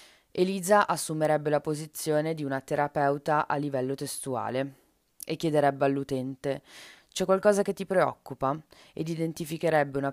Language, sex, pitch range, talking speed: Italian, female, 135-160 Hz, 125 wpm